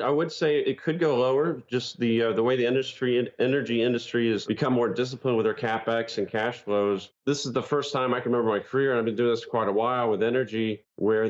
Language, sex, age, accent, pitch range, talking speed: English, male, 40-59, American, 110-130 Hz, 255 wpm